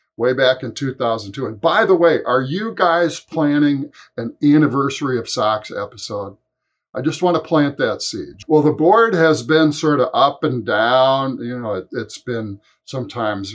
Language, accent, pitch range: English, American, 115-150 Hz